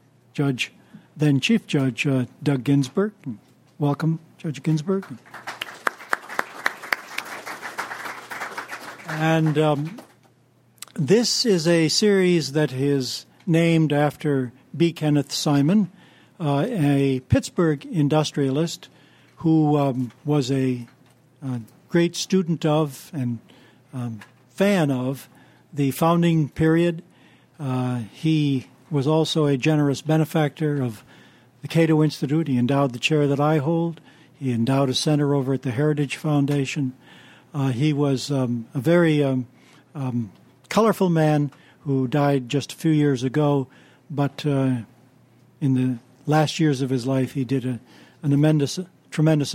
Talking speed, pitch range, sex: 120 wpm, 130-155 Hz, male